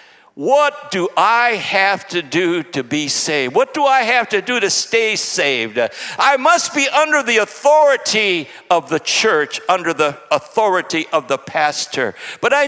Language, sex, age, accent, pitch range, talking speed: English, male, 60-79, American, 150-225 Hz, 165 wpm